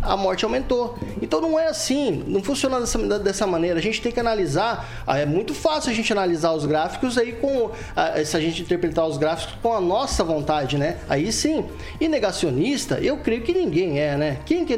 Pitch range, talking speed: 190-290 Hz, 205 wpm